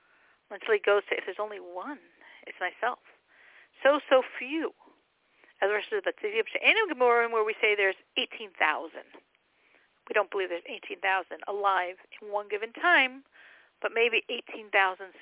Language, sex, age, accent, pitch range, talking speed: English, female, 50-69, American, 210-320 Hz, 140 wpm